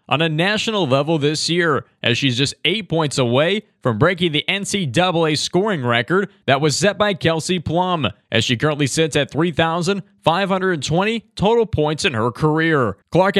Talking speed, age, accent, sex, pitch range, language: 160 wpm, 20-39, American, male, 145-180 Hz, English